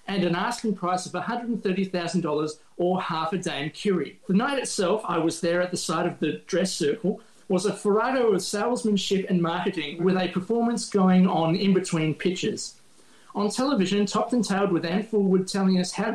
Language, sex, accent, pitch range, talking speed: English, male, Australian, 170-200 Hz, 190 wpm